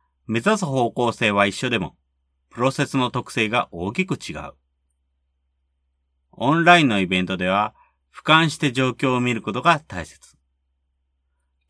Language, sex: Japanese, male